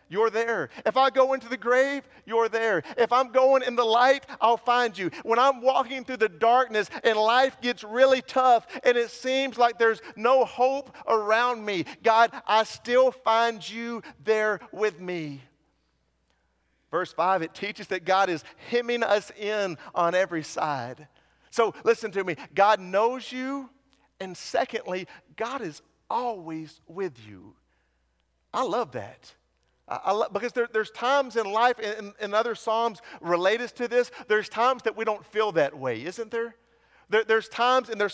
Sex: male